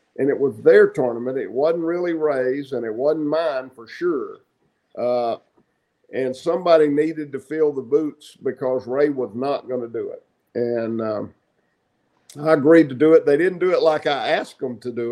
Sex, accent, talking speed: male, American, 190 wpm